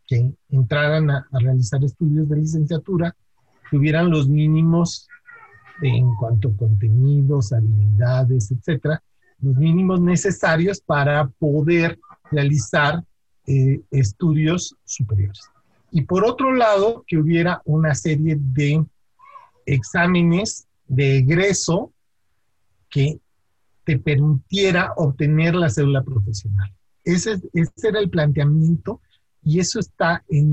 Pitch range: 130-170 Hz